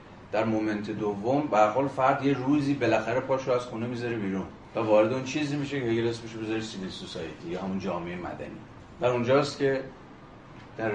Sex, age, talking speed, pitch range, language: male, 30-49, 175 wpm, 105-125 Hz, Persian